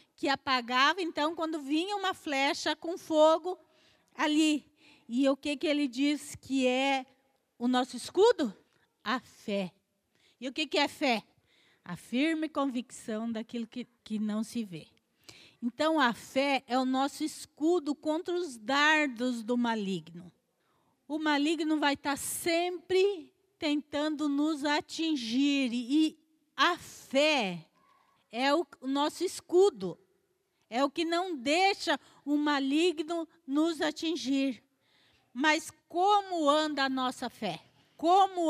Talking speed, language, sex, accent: 130 wpm, Portuguese, female, Brazilian